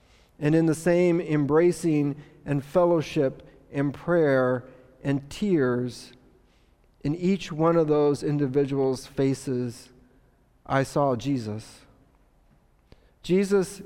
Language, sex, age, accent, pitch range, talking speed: English, male, 40-59, American, 135-160 Hz, 95 wpm